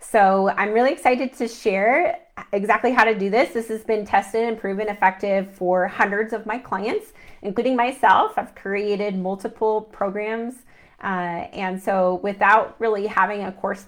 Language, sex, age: English, female, 30-49